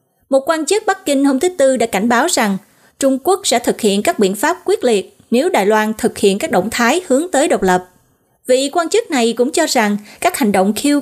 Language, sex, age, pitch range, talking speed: Vietnamese, female, 20-39, 205-285 Hz, 245 wpm